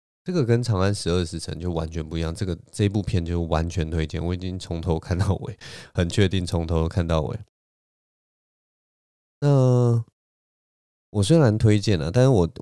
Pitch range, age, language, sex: 85-110 Hz, 30-49, Chinese, male